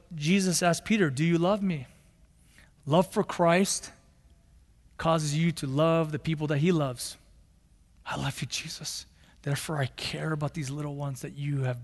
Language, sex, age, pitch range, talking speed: English, male, 30-49, 140-185 Hz, 165 wpm